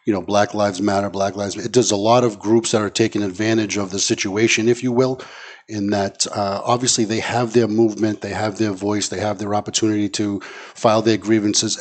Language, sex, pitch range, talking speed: English, male, 95-110 Hz, 225 wpm